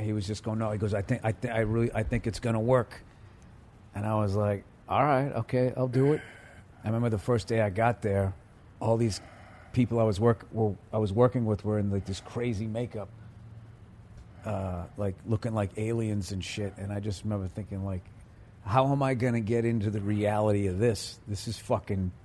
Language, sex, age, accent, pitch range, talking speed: English, male, 40-59, American, 105-125 Hz, 220 wpm